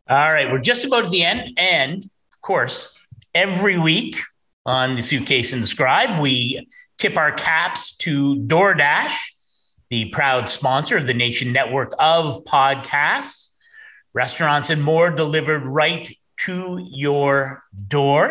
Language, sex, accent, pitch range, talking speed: English, male, American, 130-175 Hz, 140 wpm